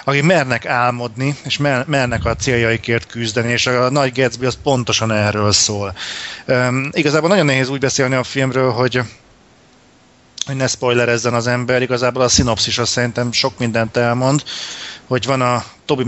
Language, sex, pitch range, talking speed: Hungarian, male, 115-130 Hz, 160 wpm